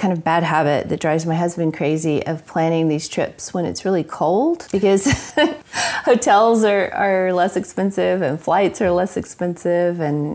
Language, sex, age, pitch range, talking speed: English, female, 30-49, 155-180 Hz, 170 wpm